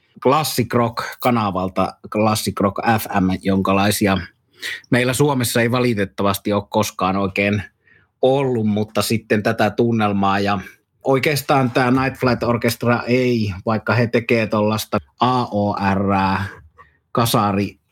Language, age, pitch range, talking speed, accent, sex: Finnish, 30-49, 100-120 Hz, 100 wpm, native, male